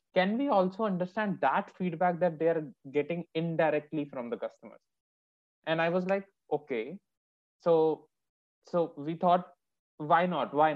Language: English